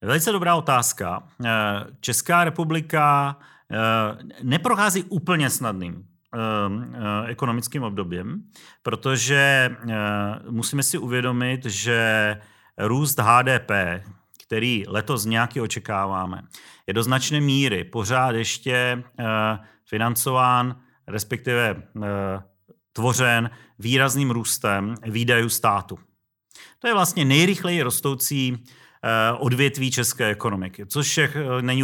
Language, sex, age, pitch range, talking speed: Czech, male, 40-59, 110-140 Hz, 85 wpm